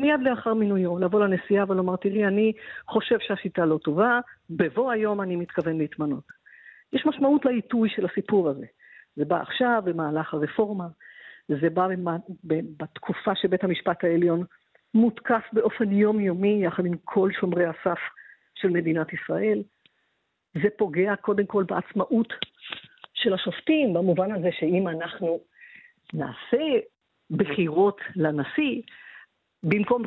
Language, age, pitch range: Hebrew, 50-69, 175-235 Hz